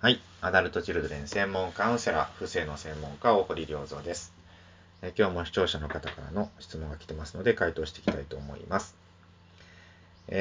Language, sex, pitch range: Japanese, male, 80-110 Hz